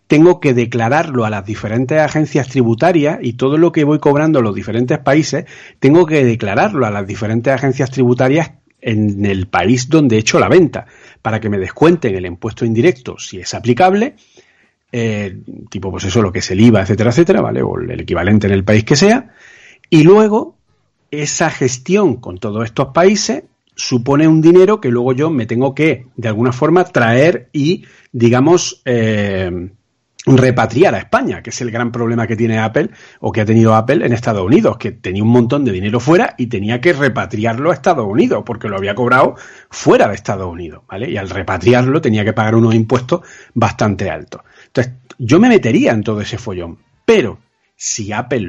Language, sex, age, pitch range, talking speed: Spanish, male, 40-59, 110-150 Hz, 185 wpm